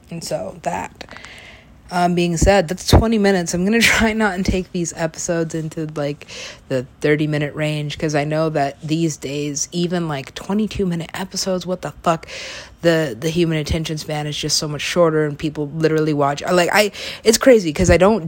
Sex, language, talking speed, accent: female, English, 190 wpm, American